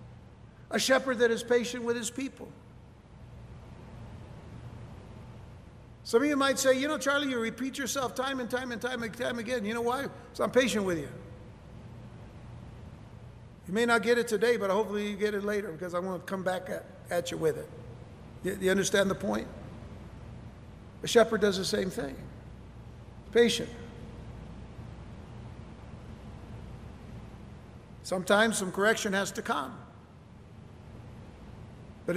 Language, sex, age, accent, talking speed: English, male, 60-79, American, 145 wpm